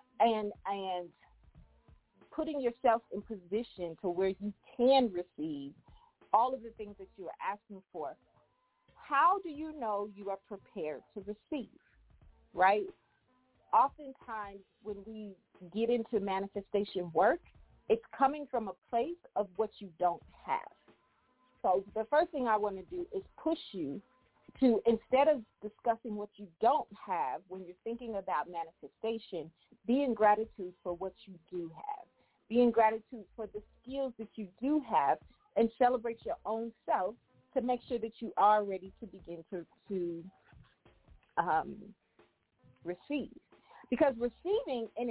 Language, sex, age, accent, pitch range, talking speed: English, female, 40-59, American, 195-260 Hz, 145 wpm